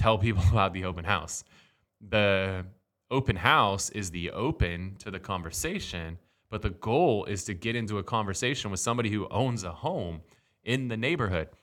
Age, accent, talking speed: 20-39, American, 170 wpm